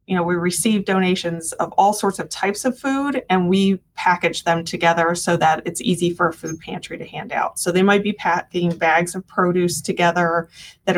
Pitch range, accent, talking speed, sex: 165-185 Hz, American, 210 wpm, female